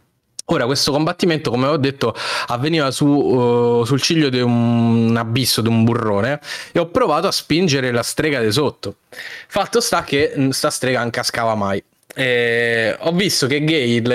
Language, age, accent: Italian, 10-29, native